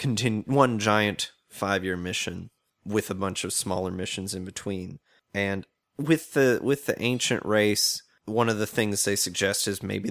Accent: American